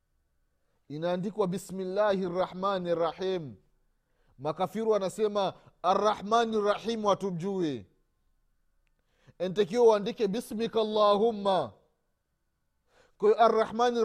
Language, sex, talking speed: Swahili, male, 70 wpm